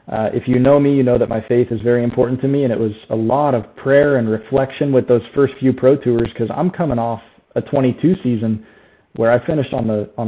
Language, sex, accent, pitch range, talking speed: English, male, American, 115-140 Hz, 250 wpm